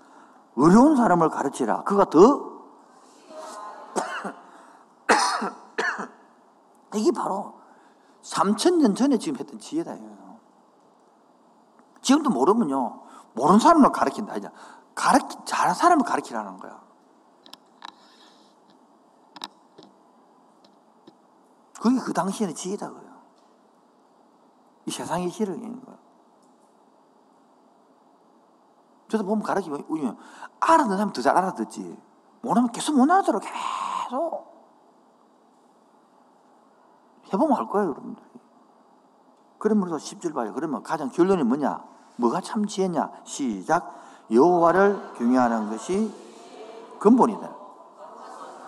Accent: native